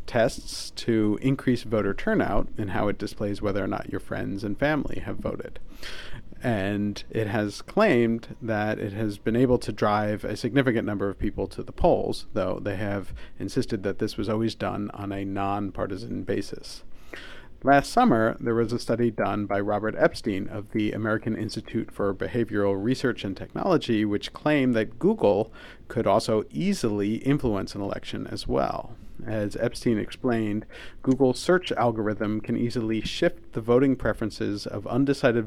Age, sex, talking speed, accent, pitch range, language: 40-59, male, 160 wpm, American, 100-120 Hz, English